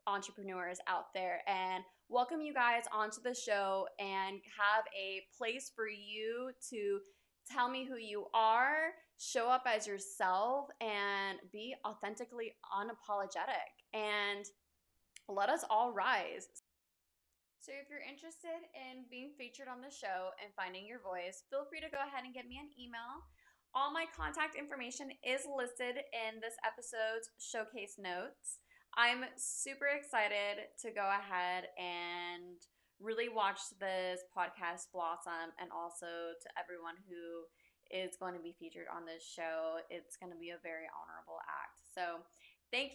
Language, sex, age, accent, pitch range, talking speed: English, female, 20-39, American, 185-260 Hz, 145 wpm